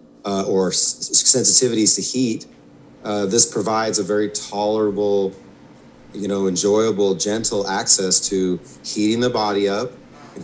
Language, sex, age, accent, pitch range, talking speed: English, male, 30-49, American, 100-125 Hz, 130 wpm